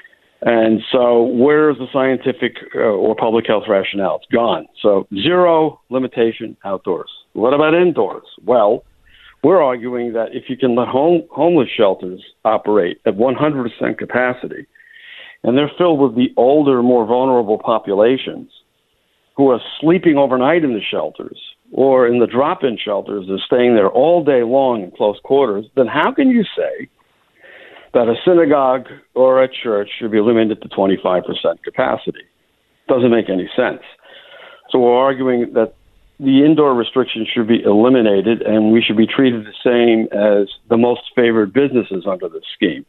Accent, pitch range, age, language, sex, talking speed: American, 115-150 Hz, 60-79, English, male, 150 wpm